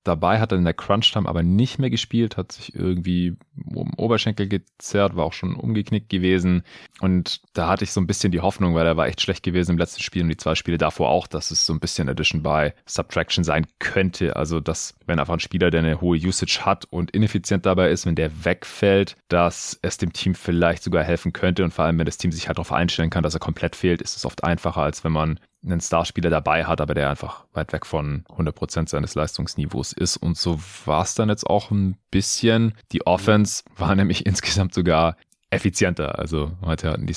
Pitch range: 80-95 Hz